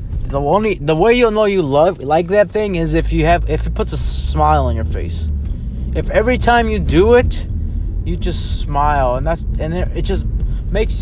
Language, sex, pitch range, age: English, male, 105-175 Hz, 20-39